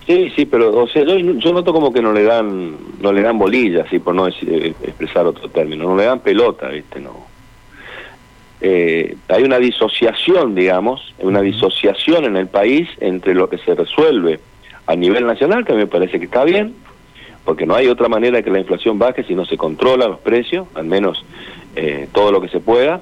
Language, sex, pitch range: Spanish, male, 95-150 Hz